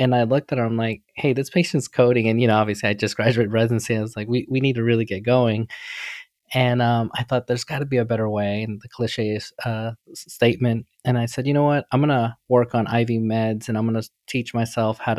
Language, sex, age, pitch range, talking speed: English, male, 20-39, 110-125 Hz, 260 wpm